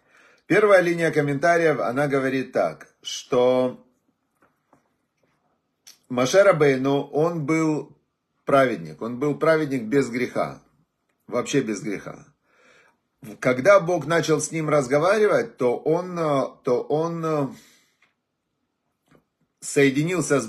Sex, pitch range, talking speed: male, 135-170 Hz, 95 wpm